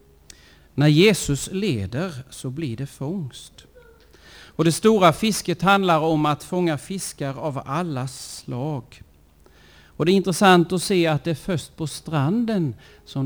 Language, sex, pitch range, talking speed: Swedish, male, 105-165 Hz, 145 wpm